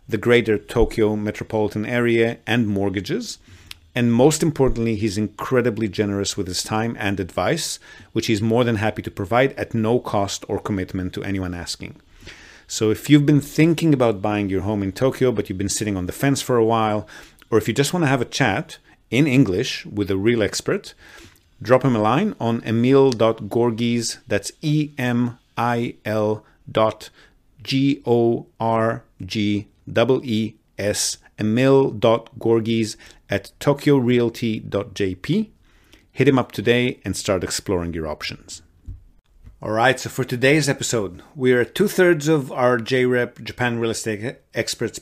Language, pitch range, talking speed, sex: English, 105-130 Hz, 150 wpm, male